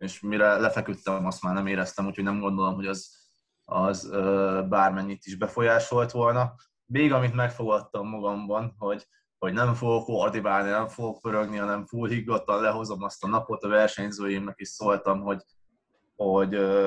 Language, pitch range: Hungarian, 100-110 Hz